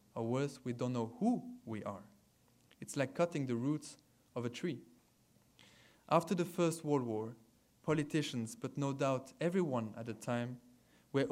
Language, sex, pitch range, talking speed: English, male, 120-155 Hz, 160 wpm